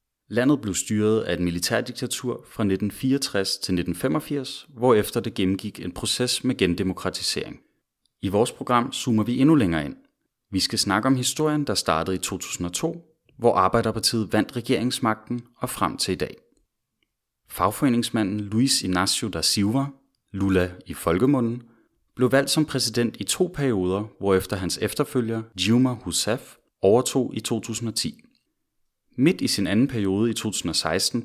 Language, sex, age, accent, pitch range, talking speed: Danish, male, 30-49, native, 95-125 Hz, 140 wpm